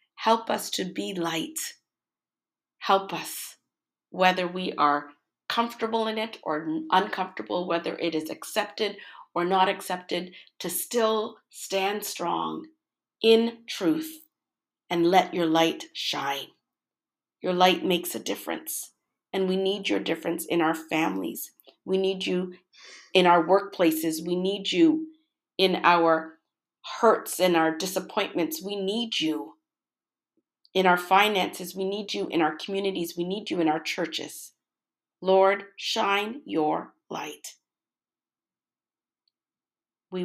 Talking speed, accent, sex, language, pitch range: 125 wpm, American, female, English, 165-200 Hz